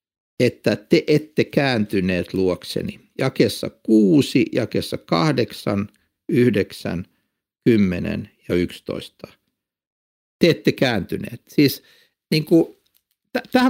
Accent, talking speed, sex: native, 85 wpm, male